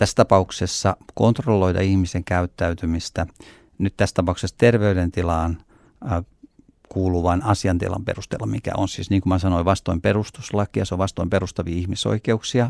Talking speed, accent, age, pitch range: 125 wpm, native, 50-69, 95-120 Hz